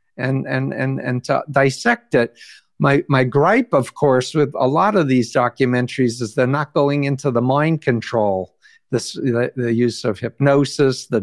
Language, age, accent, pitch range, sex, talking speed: English, 60-79, American, 125-150 Hz, male, 175 wpm